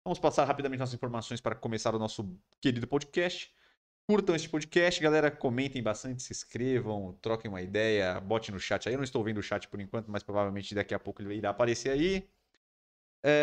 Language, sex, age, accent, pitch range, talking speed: Portuguese, male, 20-39, Brazilian, 105-130 Hz, 195 wpm